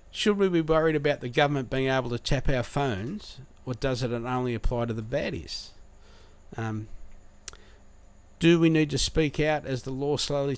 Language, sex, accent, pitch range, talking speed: English, male, Australian, 100-130 Hz, 180 wpm